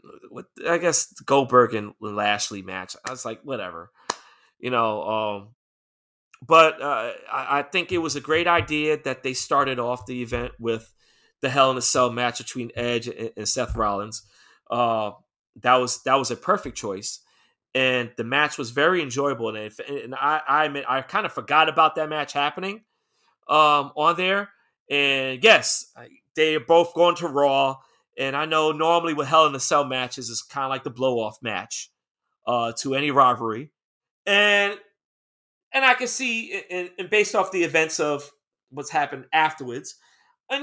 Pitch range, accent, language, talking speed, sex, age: 120-155 Hz, American, English, 165 wpm, male, 30-49